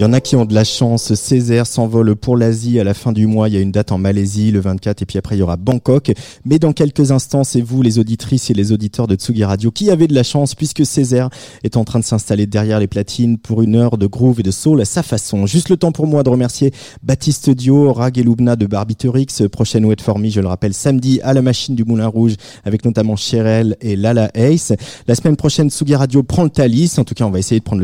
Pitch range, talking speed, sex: 110-140 Hz, 260 wpm, male